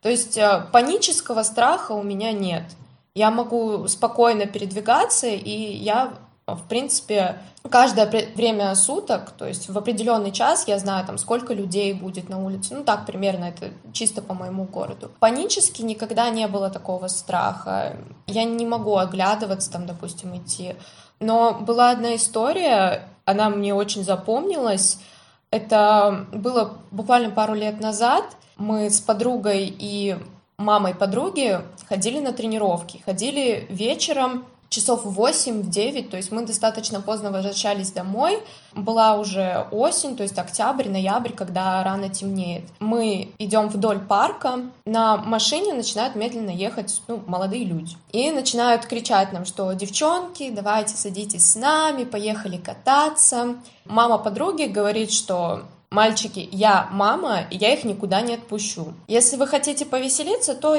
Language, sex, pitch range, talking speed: Russian, female, 195-235 Hz, 135 wpm